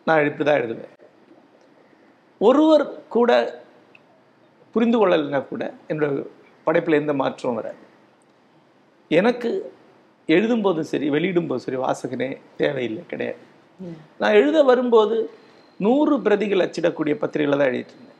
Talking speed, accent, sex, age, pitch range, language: 100 wpm, native, male, 50-69, 155-235 Hz, Tamil